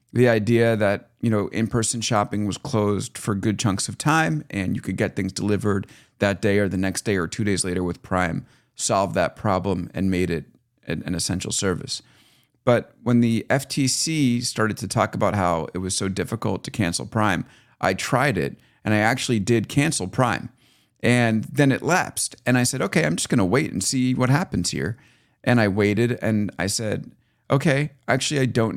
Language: English